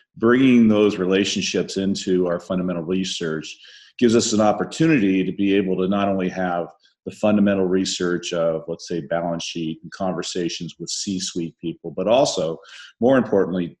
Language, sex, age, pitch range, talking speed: English, male, 40-59, 90-100 Hz, 150 wpm